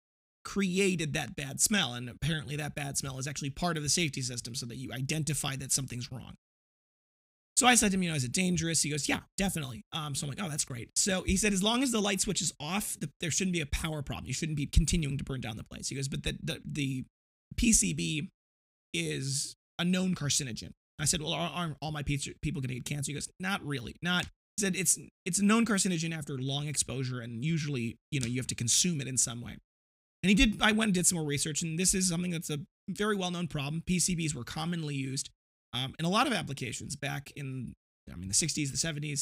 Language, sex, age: English, male, 20-39